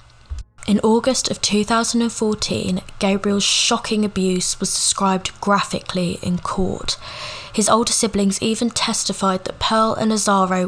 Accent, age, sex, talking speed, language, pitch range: British, 10-29, female, 120 wpm, English, 185-215 Hz